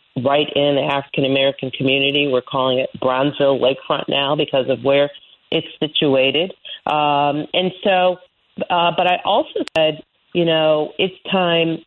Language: English